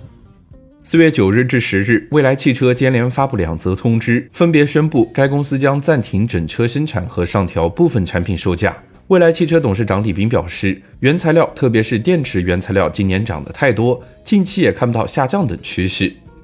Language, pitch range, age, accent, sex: Chinese, 95-140 Hz, 20-39, native, male